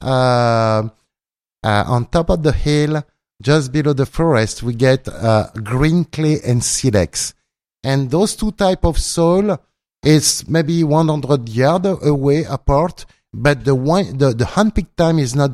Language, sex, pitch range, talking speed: English, male, 130-170 Hz, 155 wpm